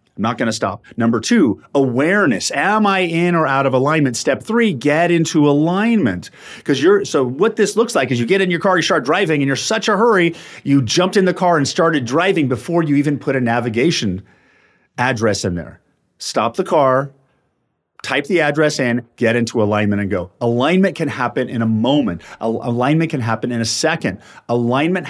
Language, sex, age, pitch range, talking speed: English, male, 40-59, 110-160 Hz, 200 wpm